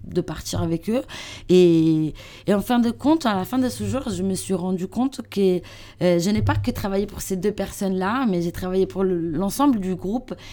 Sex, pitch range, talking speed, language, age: female, 170-210 Hz, 220 wpm, French, 20-39